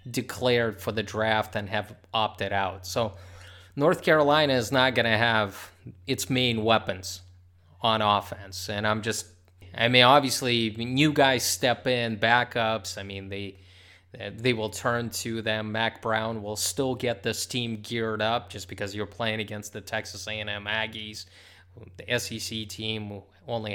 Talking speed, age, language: 155 wpm, 20-39, English